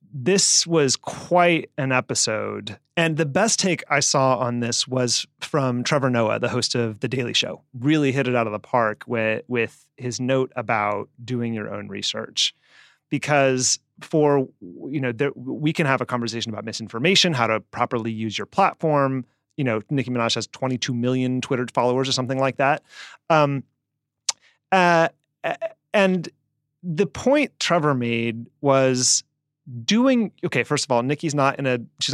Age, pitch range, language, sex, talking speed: 30-49, 125-155 Hz, English, male, 165 wpm